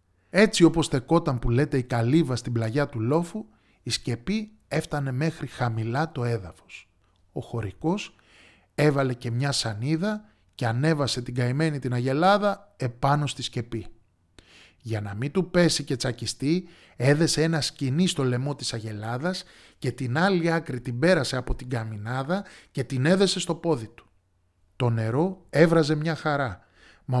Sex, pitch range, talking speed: male, 125-165 Hz, 150 wpm